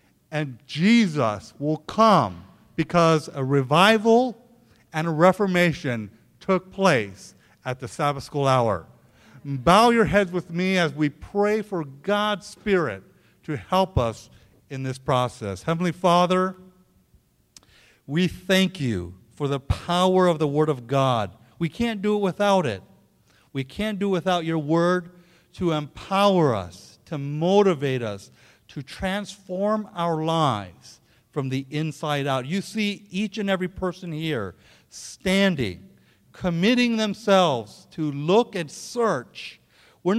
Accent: American